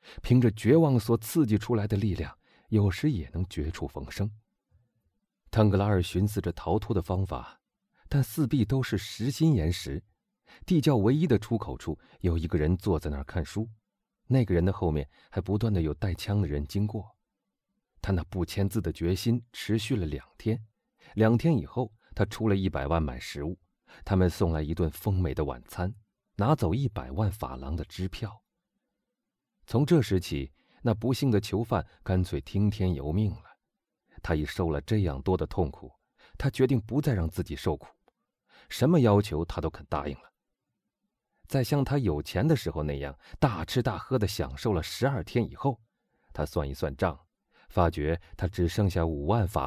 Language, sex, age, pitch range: Chinese, male, 30-49, 85-115 Hz